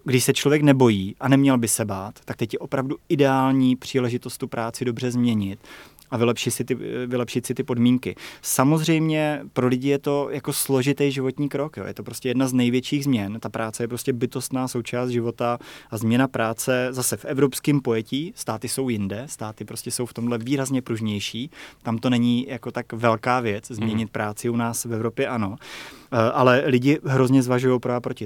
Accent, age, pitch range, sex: native, 20-39, 120-135 Hz, male